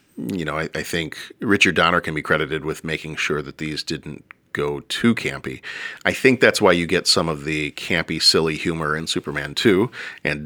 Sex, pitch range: male, 75-95 Hz